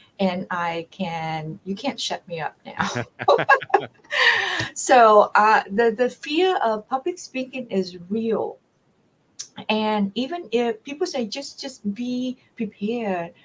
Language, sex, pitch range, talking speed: English, female, 185-225 Hz, 125 wpm